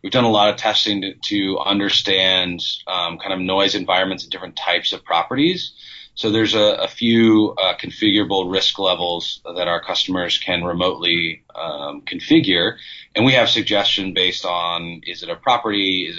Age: 30-49